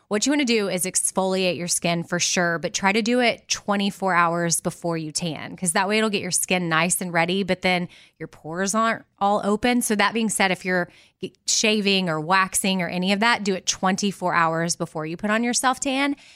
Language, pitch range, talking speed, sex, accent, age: English, 170-210 Hz, 225 wpm, female, American, 20-39